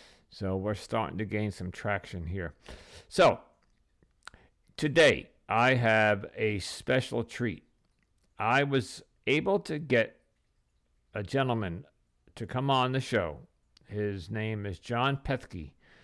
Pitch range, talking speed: 95-135 Hz, 120 wpm